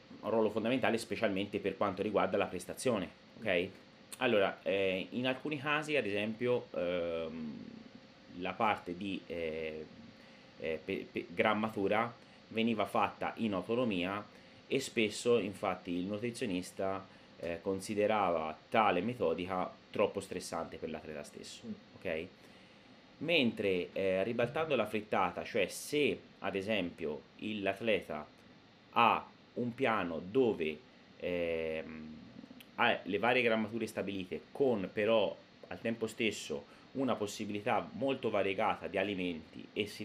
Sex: male